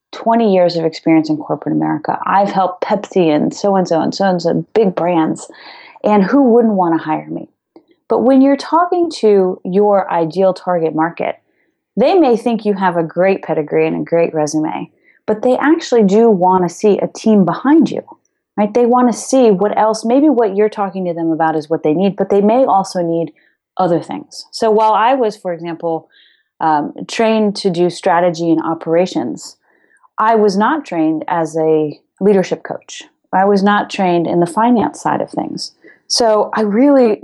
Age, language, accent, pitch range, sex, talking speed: 30-49, English, American, 170-230 Hz, female, 185 wpm